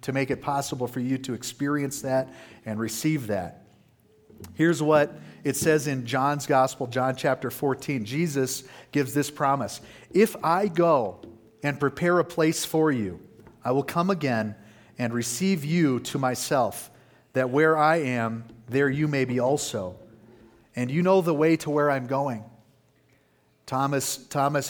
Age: 50-69